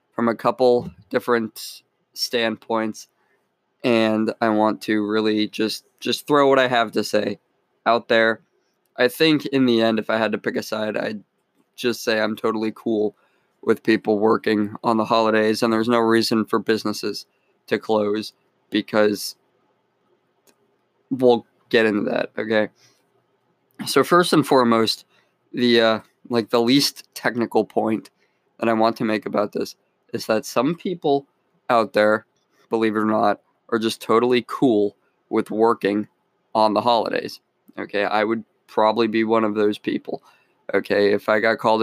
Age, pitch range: 20-39, 105-115 Hz